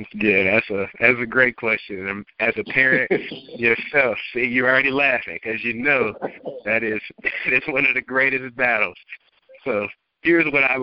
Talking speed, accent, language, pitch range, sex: 170 wpm, American, English, 105-130 Hz, male